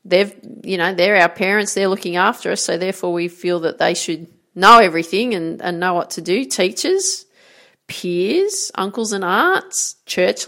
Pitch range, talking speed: 180-255 Hz, 180 wpm